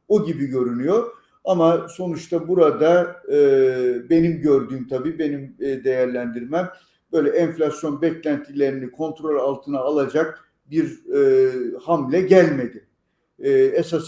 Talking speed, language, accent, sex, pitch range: 105 wpm, Turkish, native, male, 150-180 Hz